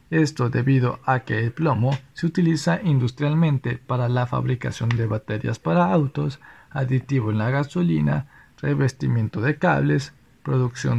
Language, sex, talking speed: Spanish, male, 130 wpm